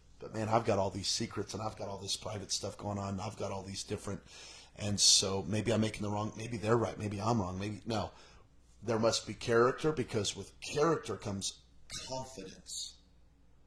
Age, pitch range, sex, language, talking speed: 30-49, 95-110 Hz, male, English, 200 wpm